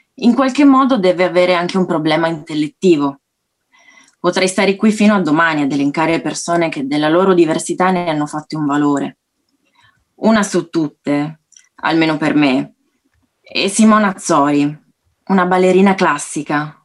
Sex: female